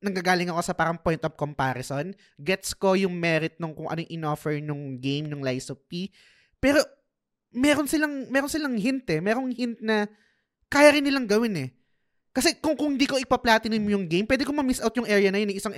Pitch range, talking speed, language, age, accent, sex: 150-220 Hz, 210 wpm, Filipino, 20-39, native, male